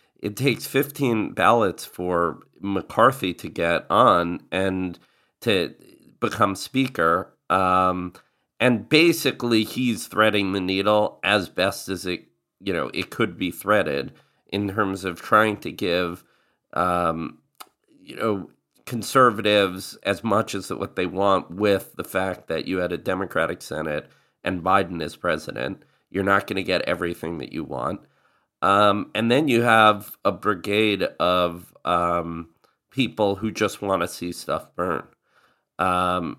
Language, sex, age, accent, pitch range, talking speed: English, male, 40-59, American, 90-110 Hz, 140 wpm